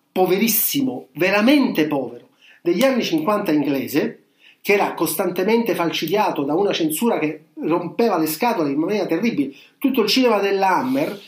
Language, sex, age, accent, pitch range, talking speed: Italian, male, 40-59, native, 170-275 Hz, 135 wpm